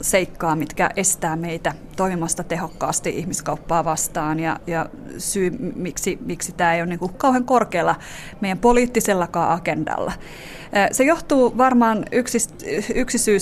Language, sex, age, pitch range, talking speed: Finnish, female, 30-49, 180-220 Hz, 115 wpm